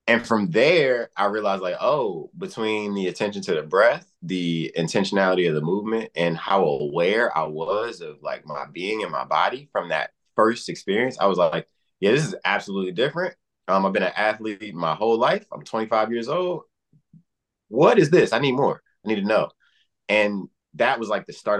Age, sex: 20-39, male